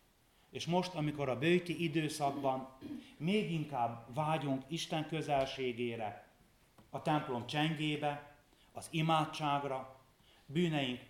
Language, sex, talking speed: Hungarian, male, 90 wpm